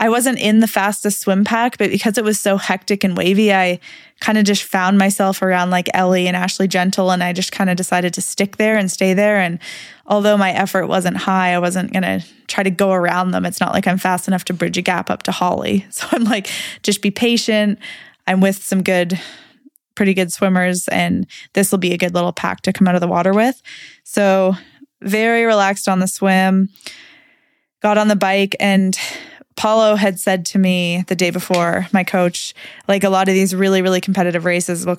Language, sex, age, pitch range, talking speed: English, female, 20-39, 180-210 Hz, 215 wpm